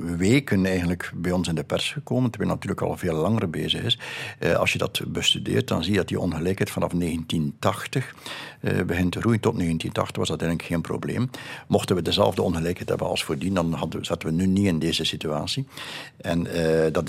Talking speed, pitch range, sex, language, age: 190 wpm, 80-110 Hz, male, Dutch, 60-79